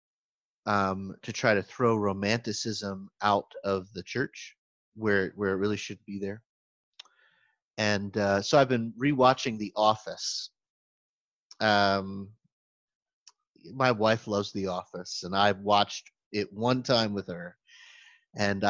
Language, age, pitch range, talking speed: English, 30-49, 100-115 Hz, 130 wpm